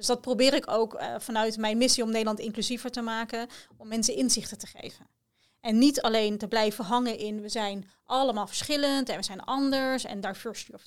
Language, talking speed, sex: Dutch, 215 wpm, female